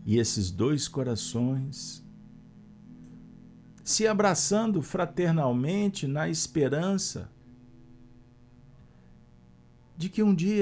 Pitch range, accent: 95-165 Hz, Brazilian